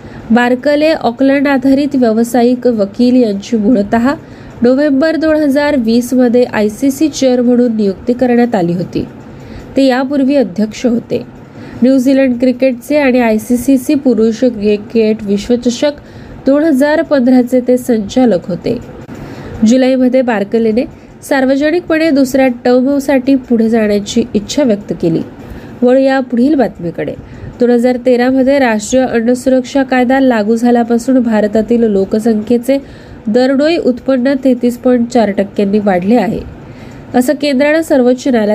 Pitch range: 230-270 Hz